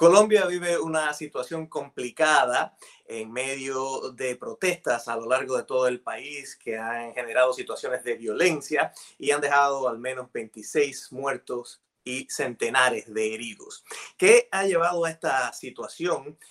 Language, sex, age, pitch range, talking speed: Spanish, male, 30-49, 120-175 Hz, 140 wpm